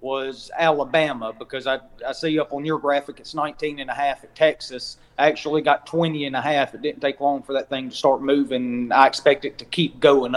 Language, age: English, 30-49